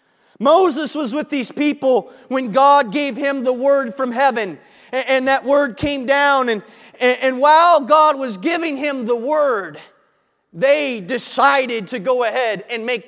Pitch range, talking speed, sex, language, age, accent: 235-295 Hz, 155 wpm, male, English, 30-49, American